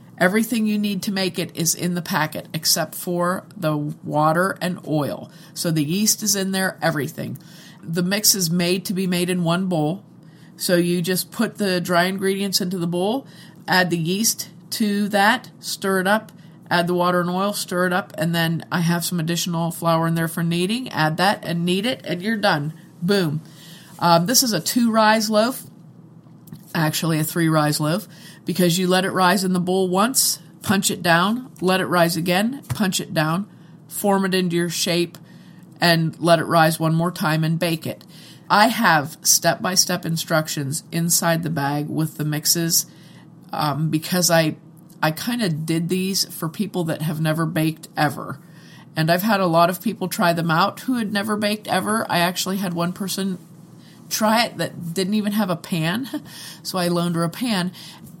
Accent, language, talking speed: American, English, 185 wpm